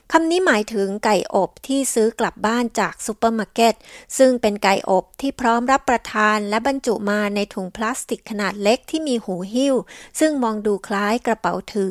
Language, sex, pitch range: Thai, female, 195-255 Hz